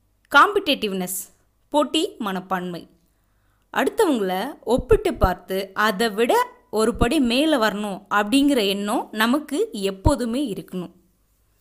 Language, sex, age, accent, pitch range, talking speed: Tamil, female, 20-39, native, 190-285 Hz, 85 wpm